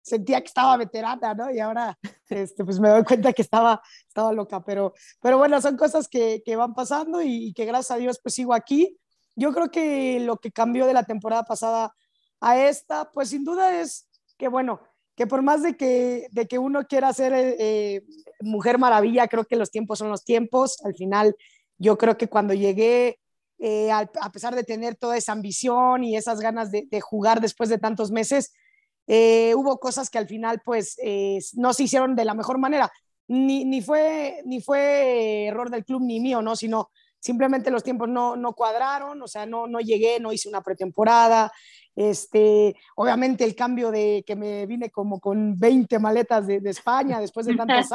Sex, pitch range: female, 220-260 Hz